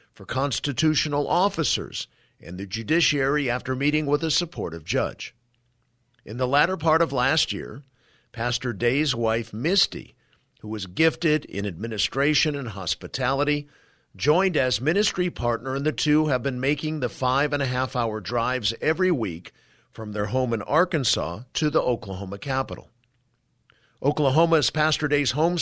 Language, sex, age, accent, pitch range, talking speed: English, male, 50-69, American, 115-150 Hz, 140 wpm